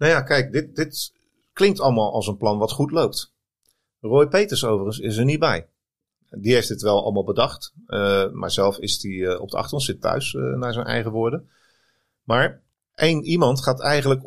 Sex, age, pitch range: male, 40-59, 100-135 Hz